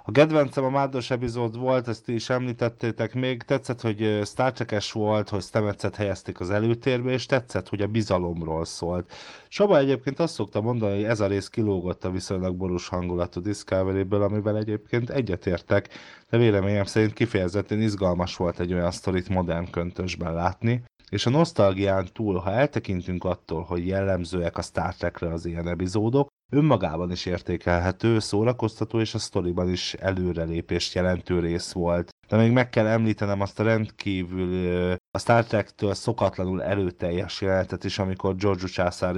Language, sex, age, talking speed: Hungarian, male, 30-49, 155 wpm